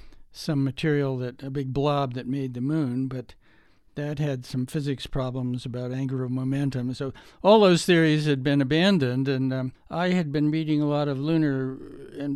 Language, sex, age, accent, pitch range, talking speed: English, male, 60-79, American, 130-150 Hz, 180 wpm